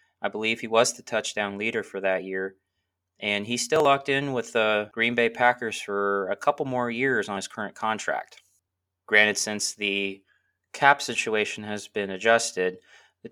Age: 20-39